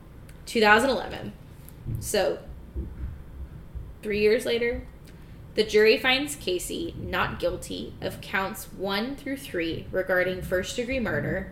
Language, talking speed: English, 100 wpm